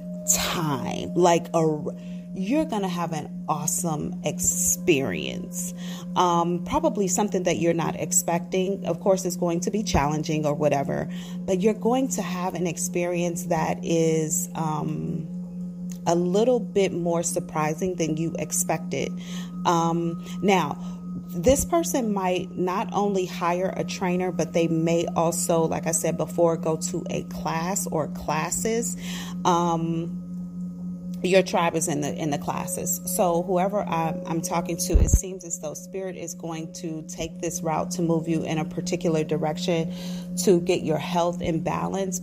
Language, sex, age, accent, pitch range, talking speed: English, female, 30-49, American, 160-180 Hz, 150 wpm